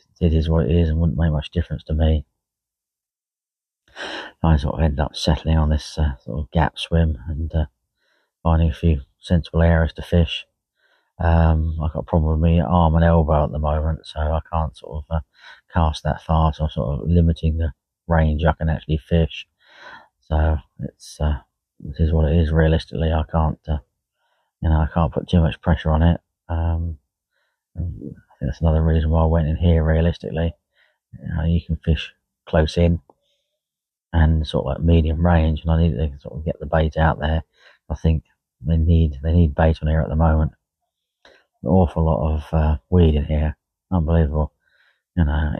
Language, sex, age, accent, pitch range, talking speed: English, male, 30-49, British, 75-85 Hz, 190 wpm